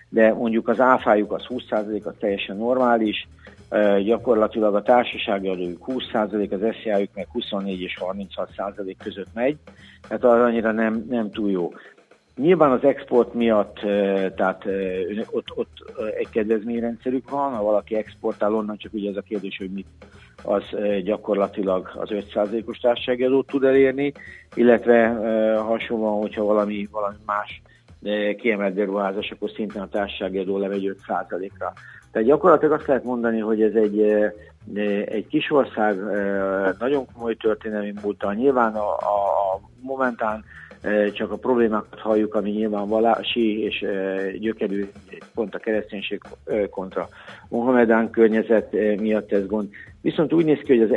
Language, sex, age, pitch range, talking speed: Hungarian, male, 50-69, 100-115 Hz, 135 wpm